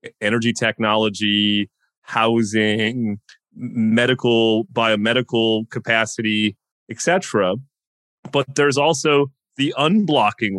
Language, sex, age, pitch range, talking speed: English, male, 30-49, 105-130 Hz, 70 wpm